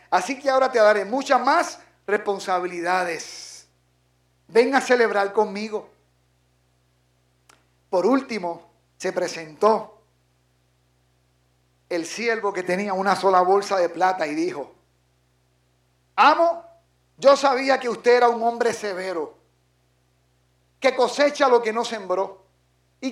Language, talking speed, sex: Spanish, 110 wpm, male